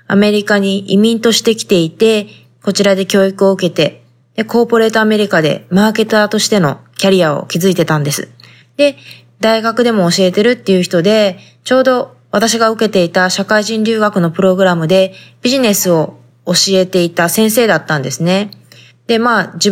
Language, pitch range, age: Japanese, 170-220 Hz, 20-39